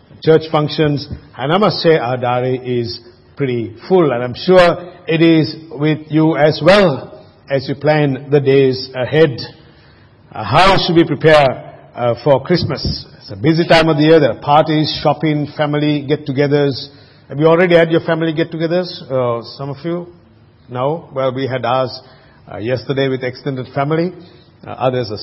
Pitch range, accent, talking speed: 135-175 Hz, Indian, 165 wpm